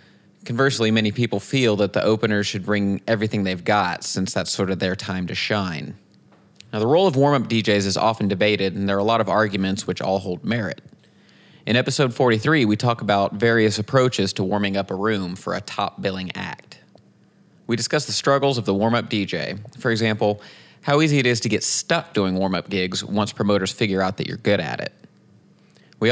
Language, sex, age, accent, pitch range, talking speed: English, male, 30-49, American, 95-115 Hz, 200 wpm